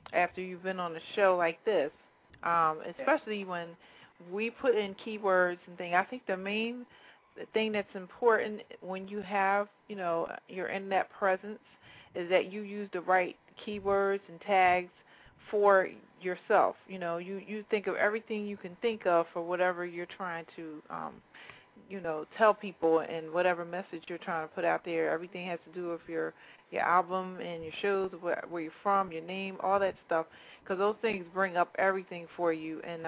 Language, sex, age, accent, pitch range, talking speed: English, female, 40-59, American, 170-195 Hz, 185 wpm